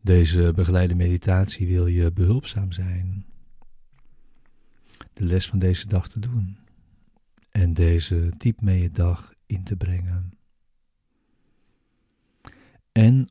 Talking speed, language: 110 wpm, Dutch